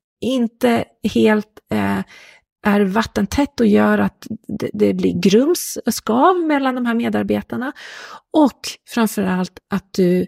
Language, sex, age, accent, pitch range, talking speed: Swedish, female, 40-59, native, 185-245 Hz, 130 wpm